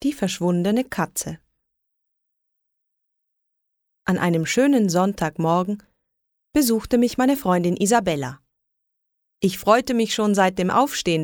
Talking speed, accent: 100 wpm, German